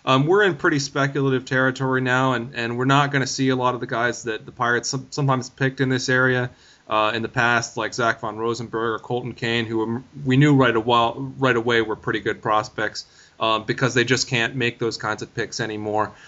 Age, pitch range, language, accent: 30-49, 115-135 Hz, English, American